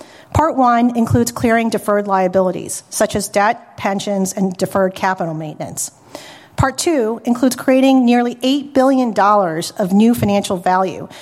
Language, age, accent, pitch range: English, 40-59, American, 195-250 Hz